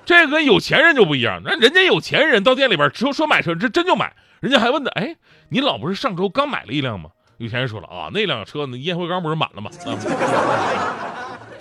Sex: male